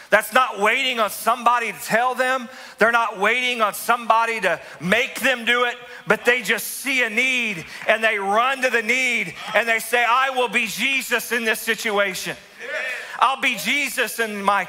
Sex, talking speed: male, 185 wpm